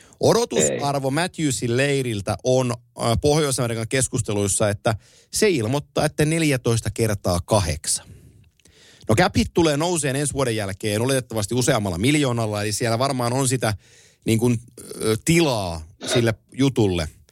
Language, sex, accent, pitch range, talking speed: Finnish, male, native, 110-140 Hz, 110 wpm